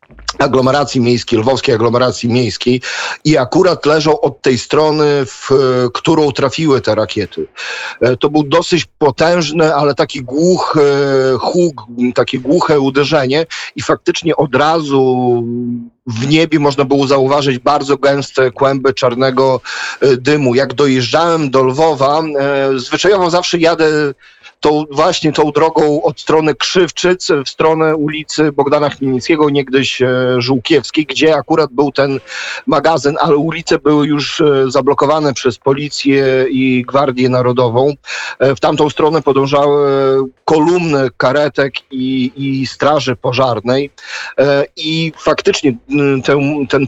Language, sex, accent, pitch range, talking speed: Polish, male, native, 130-155 Hz, 115 wpm